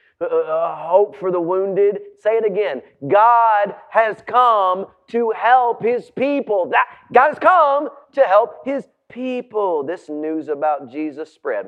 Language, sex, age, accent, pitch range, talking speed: English, male, 40-59, American, 220-295 Hz, 140 wpm